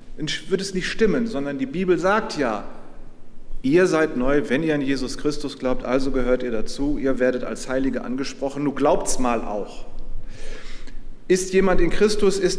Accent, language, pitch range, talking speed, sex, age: German, German, 140-205 Hz, 170 wpm, male, 40-59